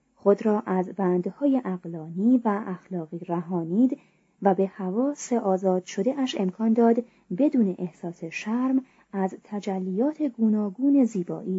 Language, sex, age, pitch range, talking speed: Persian, female, 30-49, 180-230 Hz, 125 wpm